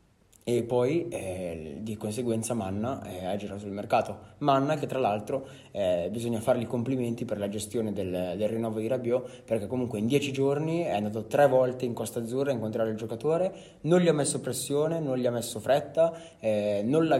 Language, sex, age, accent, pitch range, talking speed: Italian, male, 20-39, native, 105-130 Hz, 190 wpm